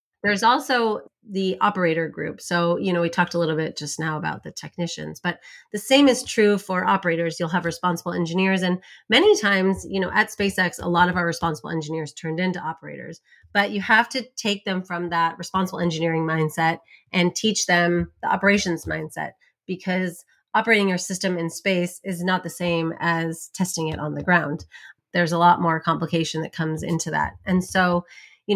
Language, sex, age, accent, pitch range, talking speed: English, female, 30-49, American, 165-195 Hz, 190 wpm